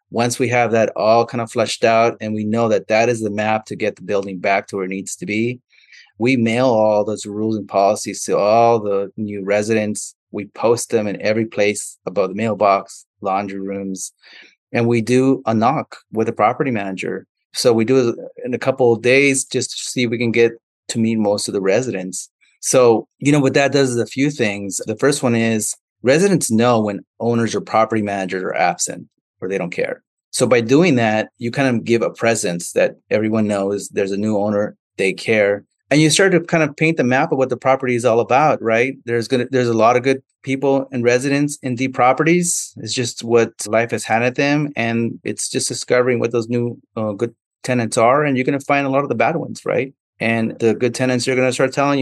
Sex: male